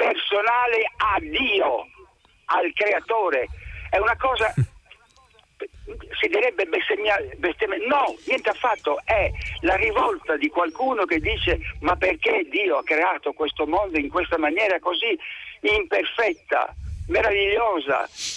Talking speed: 115 wpm